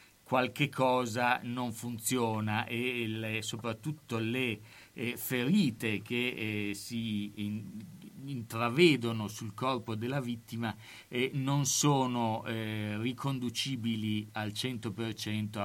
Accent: native